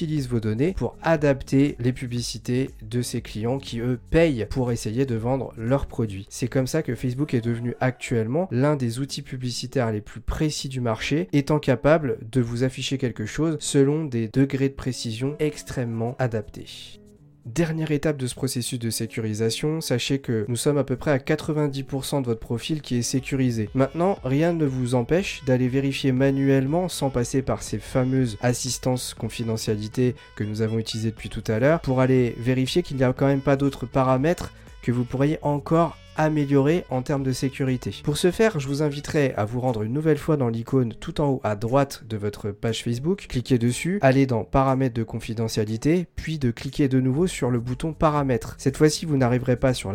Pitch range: 120-145 Hz